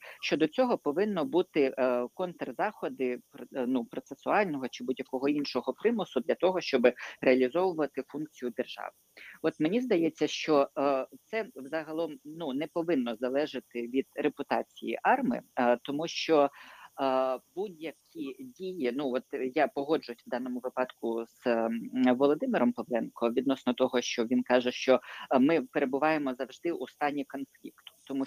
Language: Ukrainian